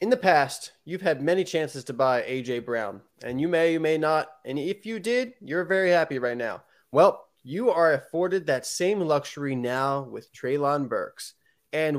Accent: American